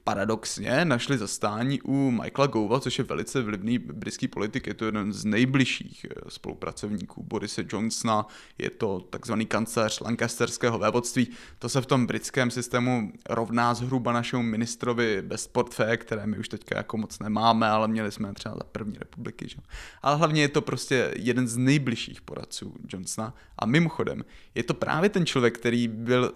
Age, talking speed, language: 20-39, 165 wpm, Czech